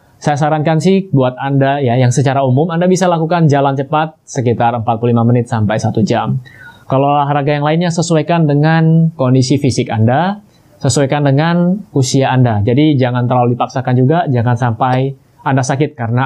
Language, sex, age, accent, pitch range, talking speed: Indonesian, male, 20-39, native, 120-155 Hz, 160 wpm